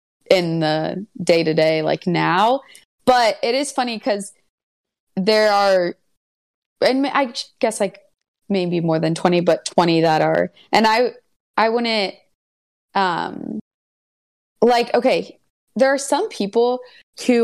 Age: 20-39